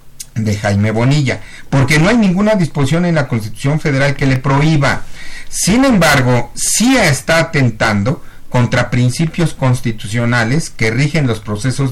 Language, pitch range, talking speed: Spanish, 115-145 Hz, 135 wpm